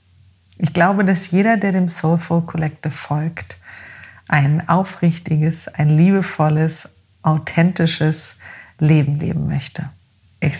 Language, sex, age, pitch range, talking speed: German, female, 50-69, 145-170 Hz, 100 wpm